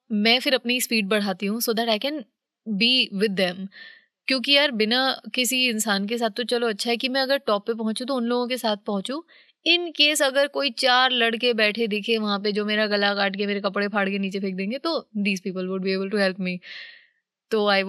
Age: 20-39